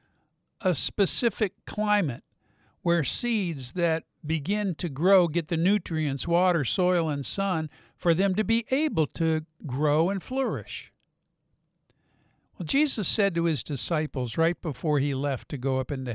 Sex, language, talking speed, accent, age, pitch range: male, English, 145 wpm, American, 50-69, 140-180 Hz